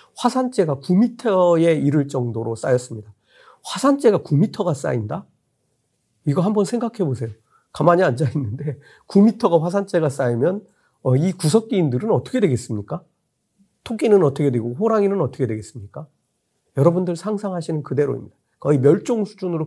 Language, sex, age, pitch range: Korean, male, 40-59, 130-200 Hz